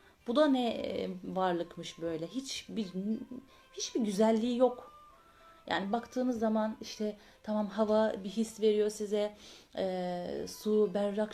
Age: 30-49